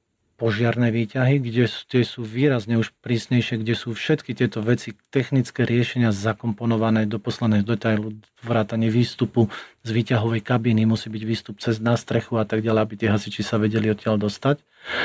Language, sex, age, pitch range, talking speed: Slovak, male, 40-59, 110-125 Hz, 160 wpm